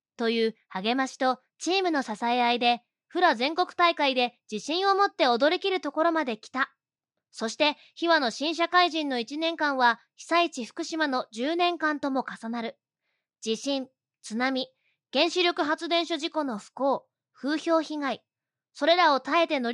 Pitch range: 250-320 Hz